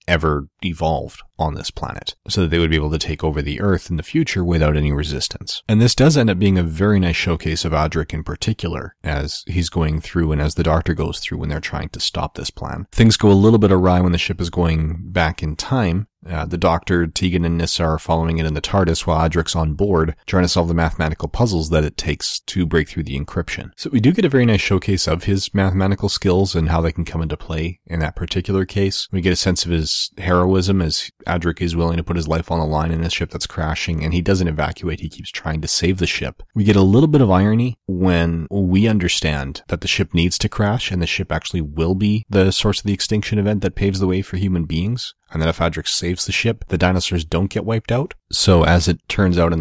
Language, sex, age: English, male, 30-49